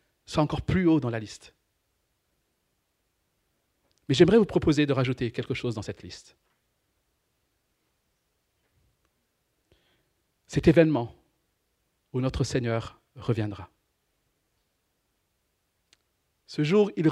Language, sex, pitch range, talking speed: French, male, 110-150 Hz, 95 wpm